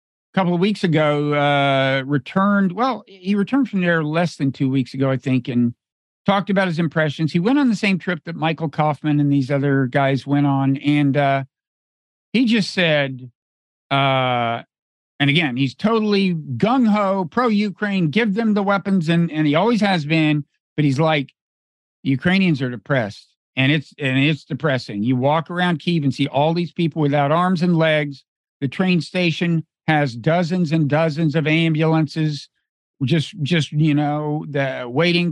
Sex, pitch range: male, 140-185 Hz